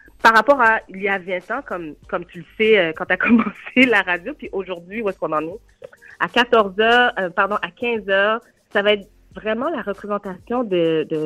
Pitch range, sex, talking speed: 175-230 Hz, female, 225 wpm